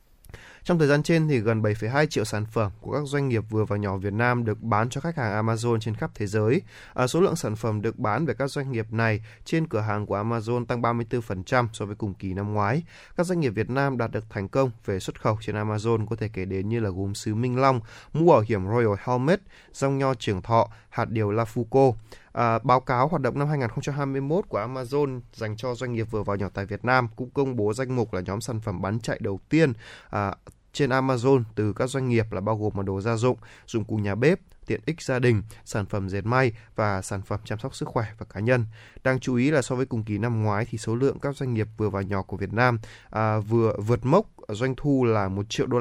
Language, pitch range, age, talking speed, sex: Vietnamese, 105-130 Hz, 20-39, 250 wpm, male